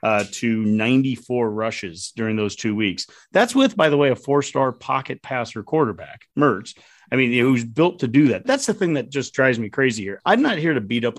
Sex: male